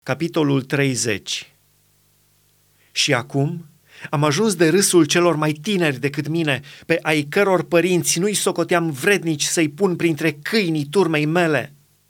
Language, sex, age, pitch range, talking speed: Romanian, male, 30-49, 140-170 Hz, 130 wpm